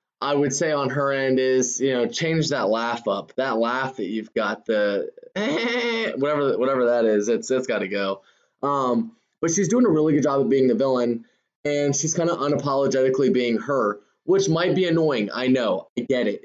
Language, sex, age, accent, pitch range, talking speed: English, male, 20-39, American, 125-155 Hz, 210 wpm